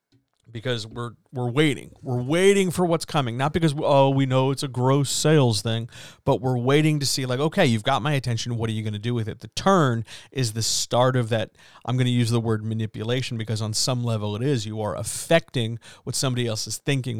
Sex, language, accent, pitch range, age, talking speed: male, English, American, 115-140 Hz, 40-59, 235 wpm